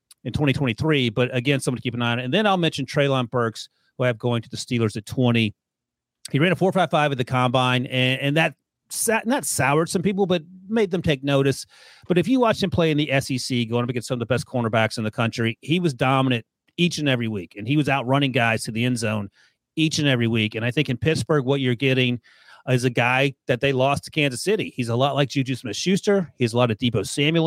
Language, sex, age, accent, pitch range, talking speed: English, male, 30-49, American, 120-145 Hz, 255 wpm